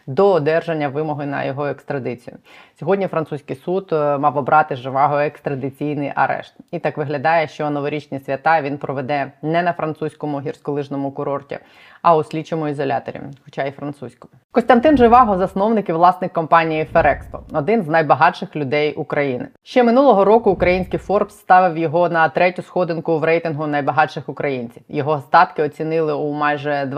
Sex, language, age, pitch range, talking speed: female, Ukrainian, 20-39, 145-165 Hz, 145 wpm